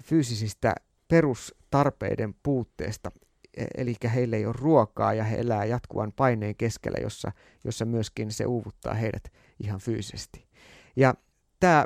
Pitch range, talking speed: 110-135 Hz, 115 wpm